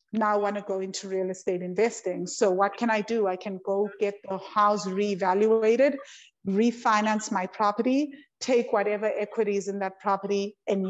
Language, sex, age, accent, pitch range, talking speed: English, female, 50-69, Indian, 190-220 Hz, 165 wpm